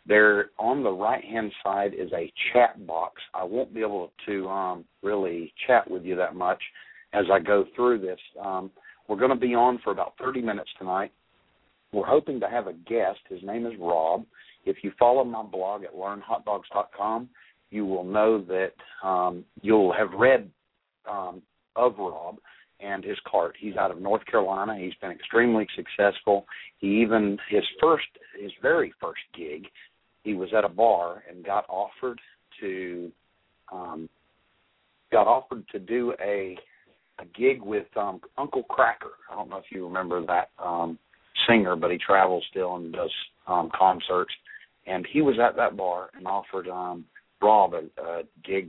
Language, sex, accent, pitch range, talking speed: English, male, American, 90-110 Hz, 170 wpm